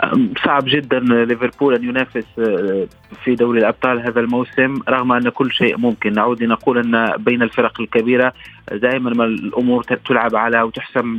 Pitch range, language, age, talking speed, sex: 120-130 Hz, Arabic, 30-49, 145 wpm, male